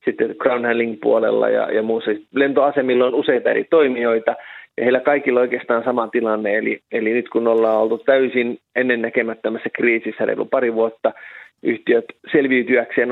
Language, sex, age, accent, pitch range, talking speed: Finnish, male, 30-49, native, 115-140 Hz, 140 wpm